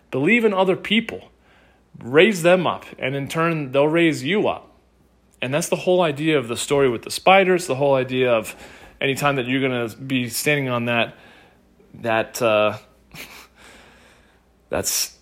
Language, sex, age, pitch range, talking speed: English, male, 30-49, 115-140 Hz, 165 wpm